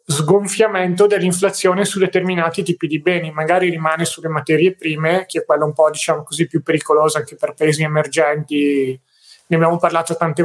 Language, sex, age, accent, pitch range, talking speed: Italian, male, 30-49, native, 155-180 Hz, 165 wpm